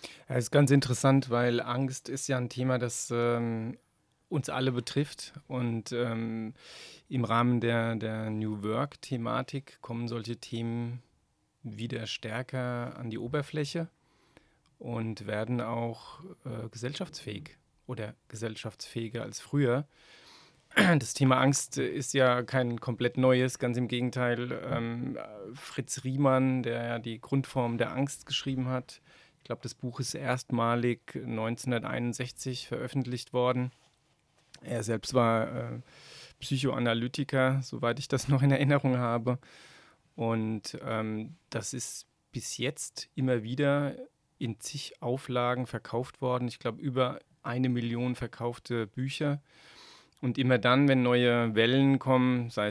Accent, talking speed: German, 125 wpm